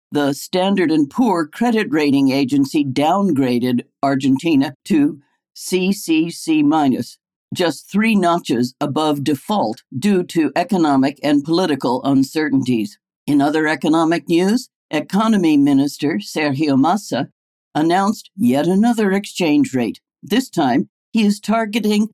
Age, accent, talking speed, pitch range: 60-79, American, 110 wpm, 145-210 Hz